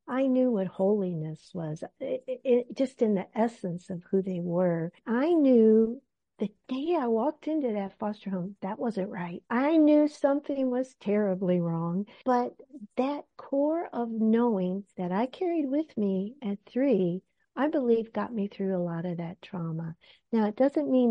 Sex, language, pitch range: female, English, 195-260 Hz